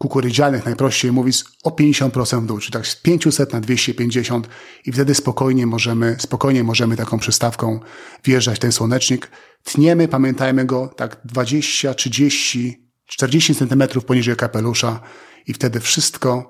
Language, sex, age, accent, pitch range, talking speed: Polish, male, 40-59, native, 115-135 Hz, 135 wpm